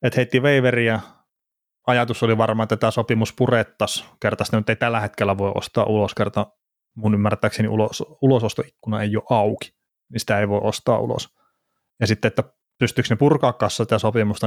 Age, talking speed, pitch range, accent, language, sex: 30-49, 160 wpm, 105-125 Hz, native, Finnish, male